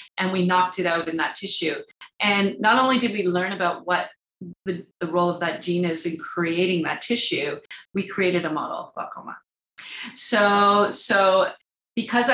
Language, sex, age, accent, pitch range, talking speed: English, female, 40-59, American, 175-220 Hz, 175 wpm